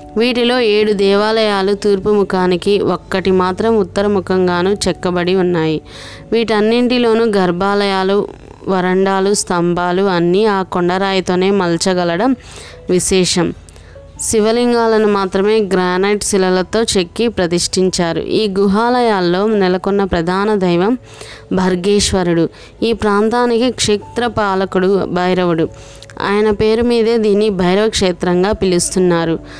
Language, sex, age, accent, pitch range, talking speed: Telugu, female, 20-39, native, 180-215 Hz, 85 wpm